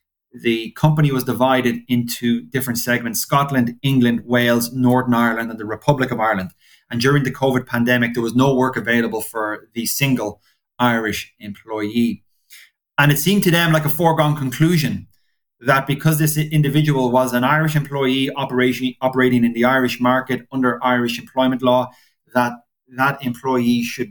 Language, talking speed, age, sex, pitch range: English, 155 wpm, 30-49, male, 120-150 Hz